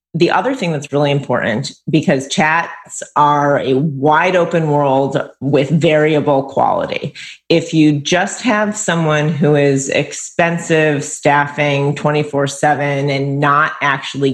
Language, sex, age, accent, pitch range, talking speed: English, female, 30-49, American, 140-170 Hz, 130 wpm